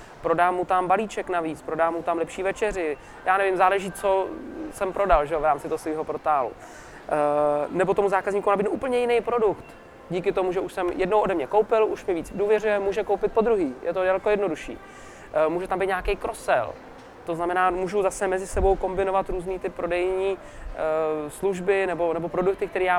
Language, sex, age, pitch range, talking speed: Czech, male, 20-39, 170-195 Hz, 190 wpm